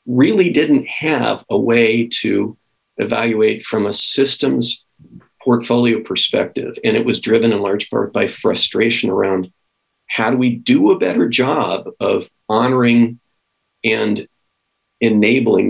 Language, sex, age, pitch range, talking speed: English, male, 40-59, 105-125 Hz, 125 wpm